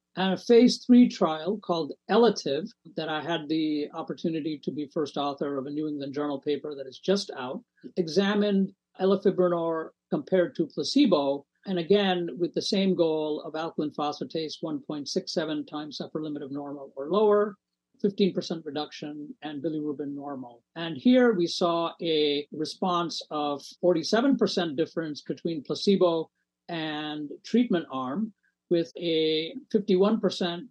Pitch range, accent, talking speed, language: 150-185 Hz, American, 135 wpm, English